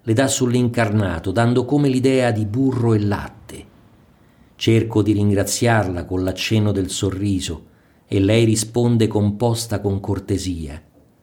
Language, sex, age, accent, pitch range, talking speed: Italian, male, 50-69, native, 95-115 Hz, 125 wpm